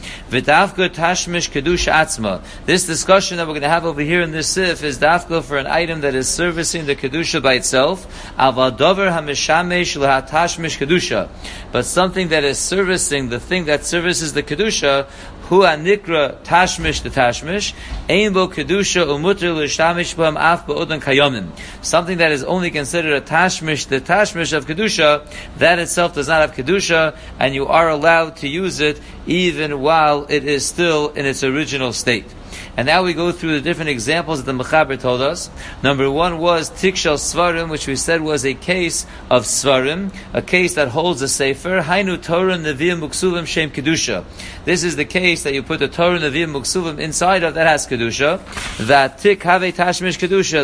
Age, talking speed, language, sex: 50-69, 150 wpm, English, male